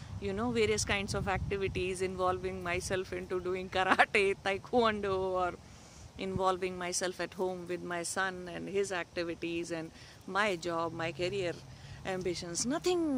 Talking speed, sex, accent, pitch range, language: 135 wpm, female, Indian, 160-210 Hz, English